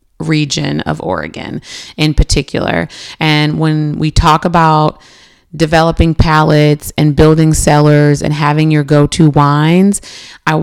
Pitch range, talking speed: 145-165 Hz, 125 wpm